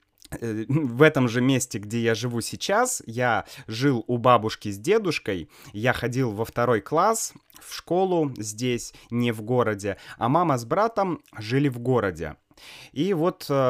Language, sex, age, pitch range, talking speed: Russian, male, 20-39, 115-145 Hz, 150 wpm